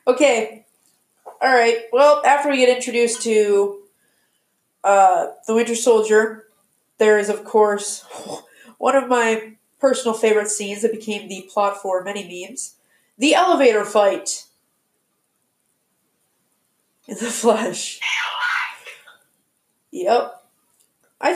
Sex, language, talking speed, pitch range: female, English, 105 wpm, 210-260 Hz